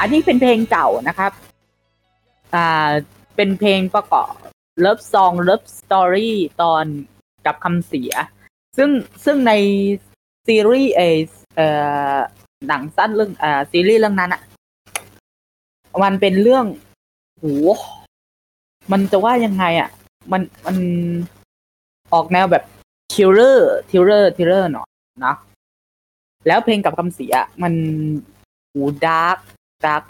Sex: female